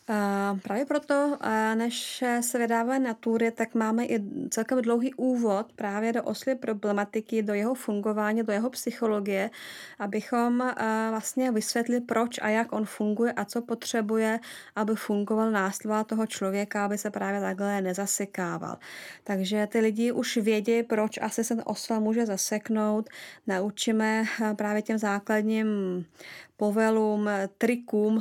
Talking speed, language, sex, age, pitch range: 135 wpm, Czech, female, 20-39, 210-235 Hz